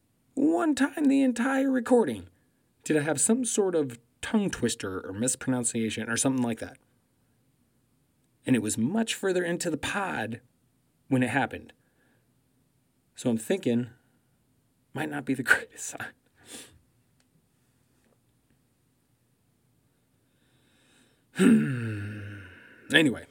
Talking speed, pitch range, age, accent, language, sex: 105 wpm, 115-155 Hz, 30-49, American, English, male